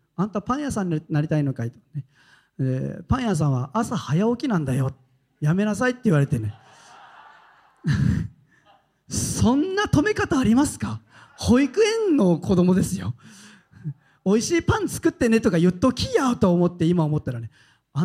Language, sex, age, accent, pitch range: Japanese, male, 40-59, native, 150-235 Hz